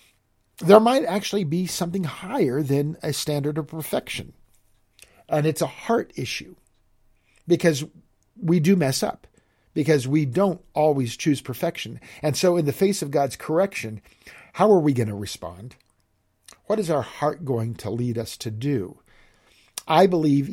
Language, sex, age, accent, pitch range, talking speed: English, male, 50-69, American, 110-160 Hz, 155 wpm